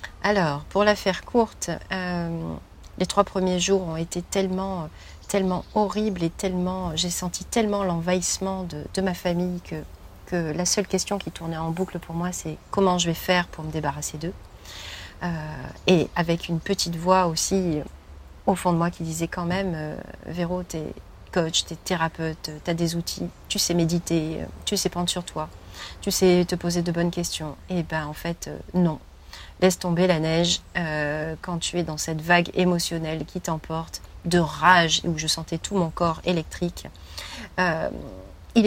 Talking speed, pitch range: 180 wpm, 160-185 Hz